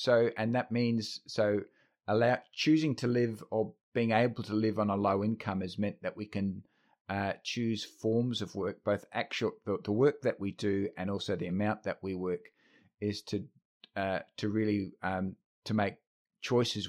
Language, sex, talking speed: English, male, 180 wpm